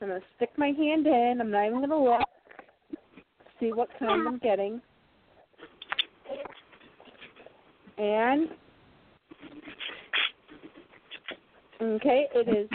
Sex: female